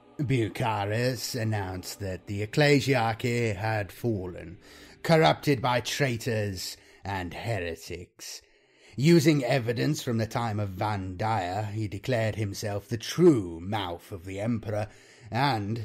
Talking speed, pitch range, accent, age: 115 wpm, 95-135 Hz, British, 30-49